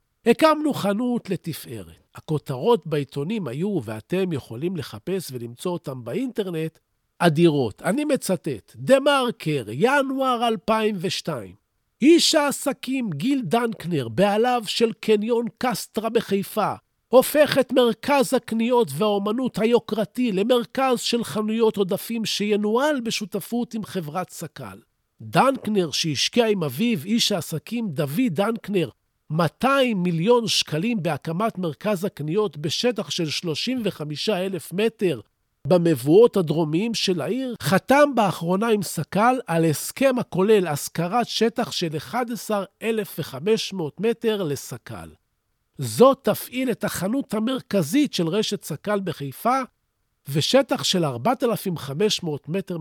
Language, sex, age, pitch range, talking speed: Hebrew, male, 50-69, 155-235 Hz, 105 wpm